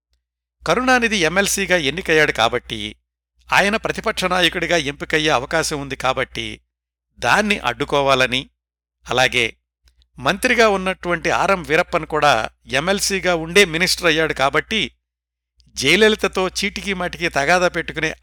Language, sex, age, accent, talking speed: Telugu, male, 60-79, native, 90 wpm